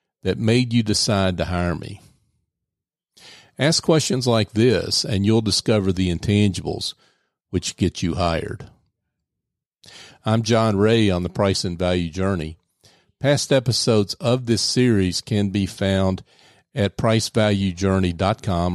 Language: English